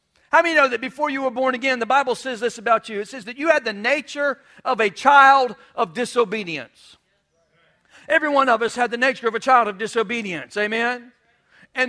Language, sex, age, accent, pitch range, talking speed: English, male, 50-69, American, 230-285 Hz, 210 wpm